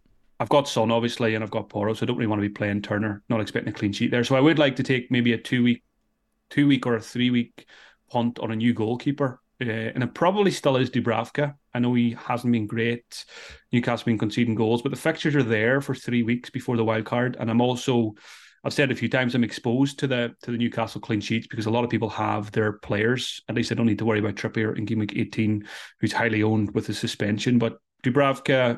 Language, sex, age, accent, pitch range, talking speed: English, male, 30-49, British, 110-130 Hz, 245 wpm